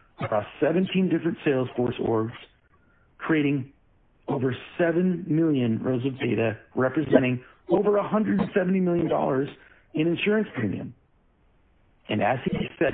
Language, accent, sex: English, American, male